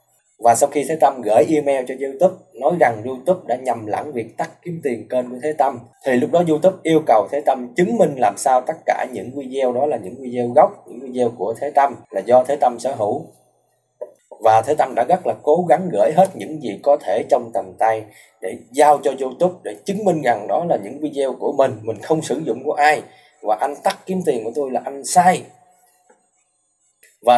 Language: Vietnamese